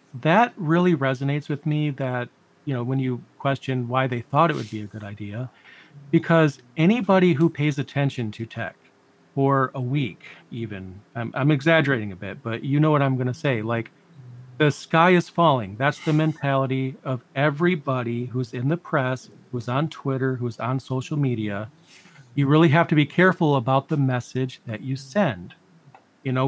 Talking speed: 180 wpm